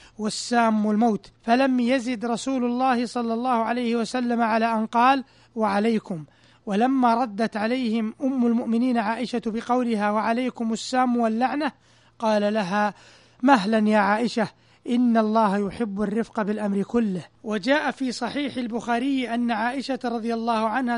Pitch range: 220-245 Hz